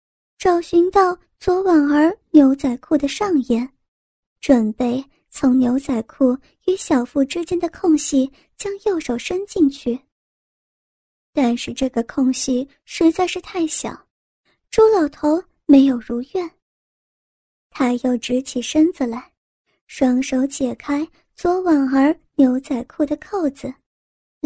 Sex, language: male, Chinese